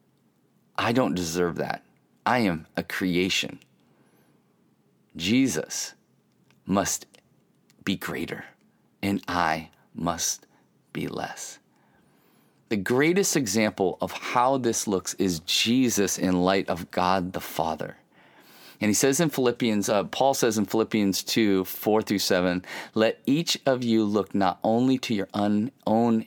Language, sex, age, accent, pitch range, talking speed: English, male, 40-59, American, 100-130 Hz, 130 wpm